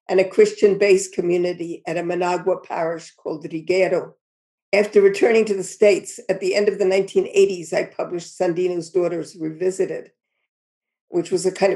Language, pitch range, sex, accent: English, 170-195 Hz, female, American